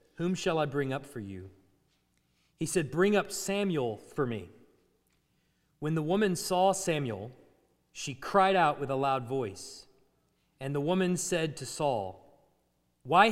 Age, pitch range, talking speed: 30-49, 140-220 Hz, 150 wpm